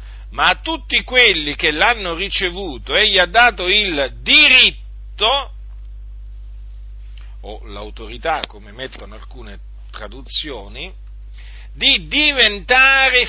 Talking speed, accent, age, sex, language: 90 wpm, native, 50-69, male, Italian